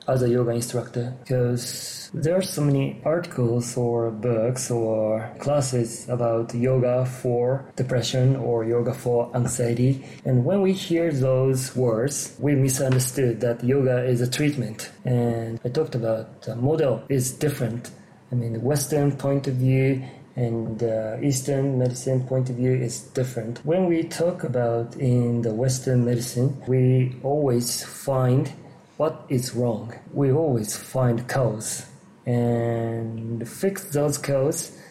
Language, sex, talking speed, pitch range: English, male, 140 wpm, 120-135 Hz